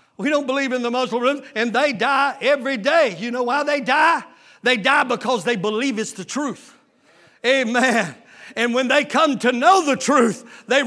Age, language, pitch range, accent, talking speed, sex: 50-69, English, 240-290 Hz, American, 190 wpm, male